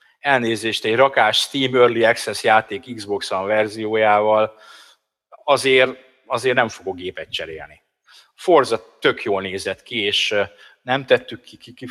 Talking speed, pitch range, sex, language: 130 wpm, 95-120 Hz, male, Hungarian